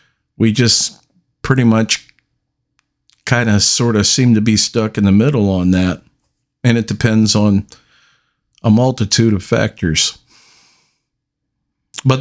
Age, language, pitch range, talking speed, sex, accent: 50-69, English, 105-125 Hz, 130 wpm, male, American